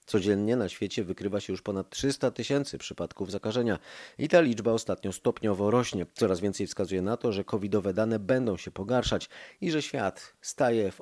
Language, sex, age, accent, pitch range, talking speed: Polish, male, 30-49, native, 100-125 Hz, 180 wpm